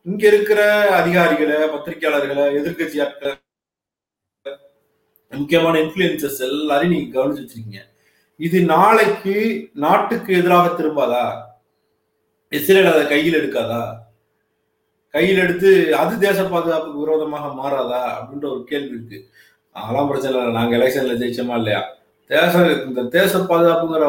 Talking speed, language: 90 wpm, Tamil